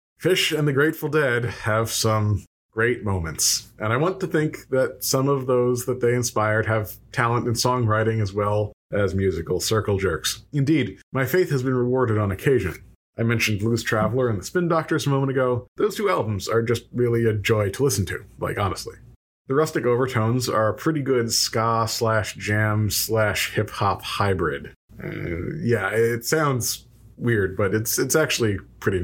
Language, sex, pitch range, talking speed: English, male, 105-130 Hz, 170 wpm